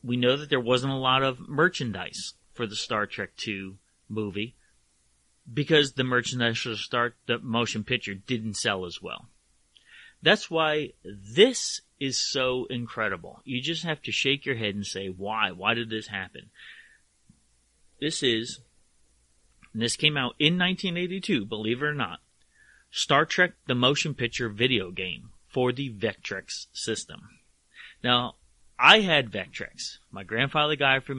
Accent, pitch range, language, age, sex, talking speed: American, 105-130 Hz, English, 30-49, male, 150 wpm